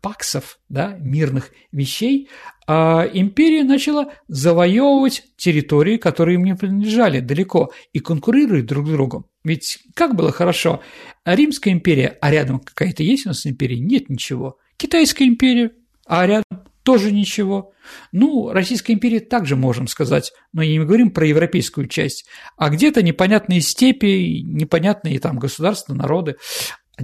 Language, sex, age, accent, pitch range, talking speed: Russian, male, 50-69, native, 150-225 Hz, 140 wpm